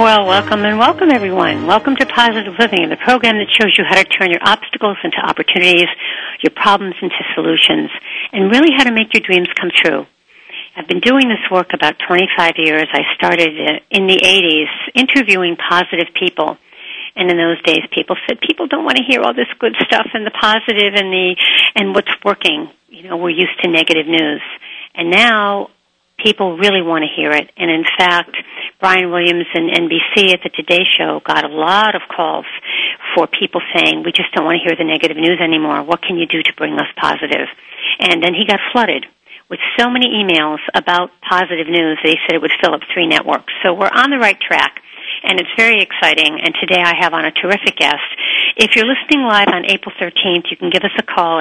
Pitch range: 170-215 Hz